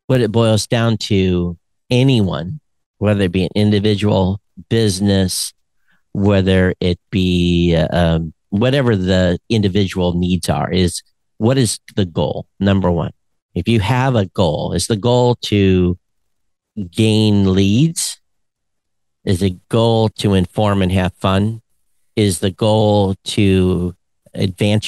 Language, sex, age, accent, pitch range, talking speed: English, male, 50-69, American, 90-105 Hz, 125 wpm